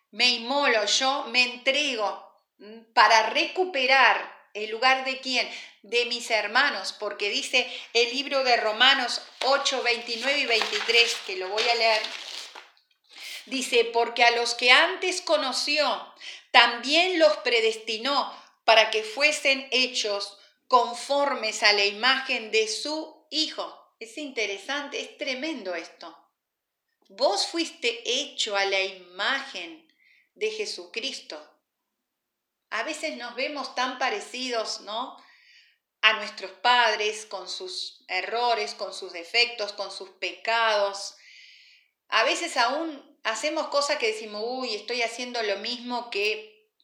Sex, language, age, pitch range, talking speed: female, Spanish, 40-59, 215-285 Hz, 125 wpm